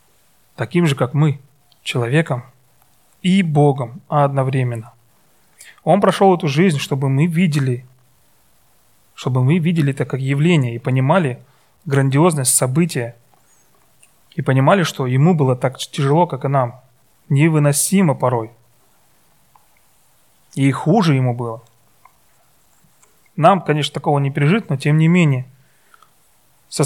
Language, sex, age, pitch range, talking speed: Russian, male, 30-49, 130-165 Hz, 115 wpm